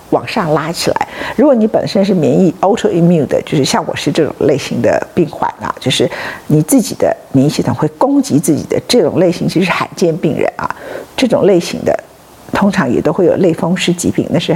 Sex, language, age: female, Chinese, 50-69